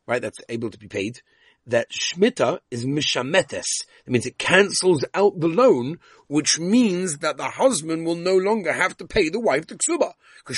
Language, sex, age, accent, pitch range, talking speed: English, male, 40-59, British, 110-155 Hz, 185 wpm